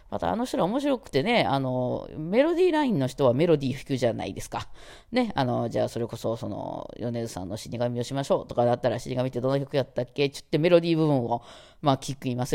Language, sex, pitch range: Japanese, female, 120-170 Hz